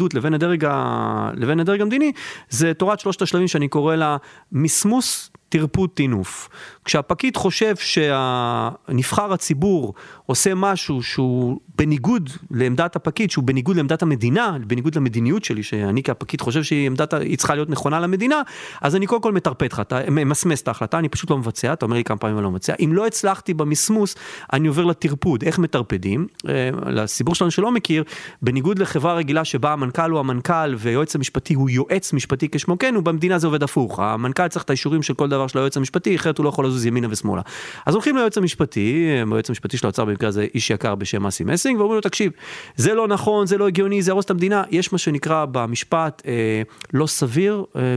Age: 40-59